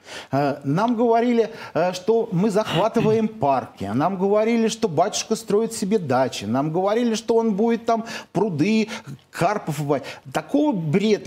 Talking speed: 125 wpm